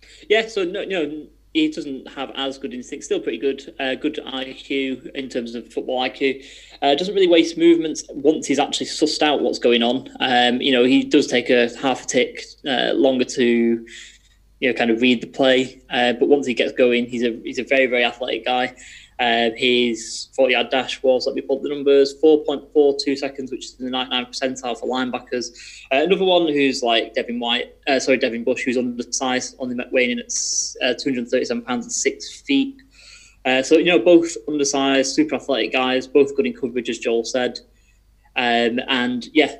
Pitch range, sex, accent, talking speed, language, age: 120-140 Hz, male, British, 200 wpm, English, 20-39